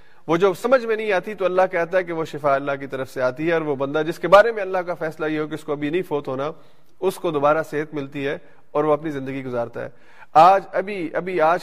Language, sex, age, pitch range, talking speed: Urdu, male, 30-49, 140-170 Hz, 280 wpm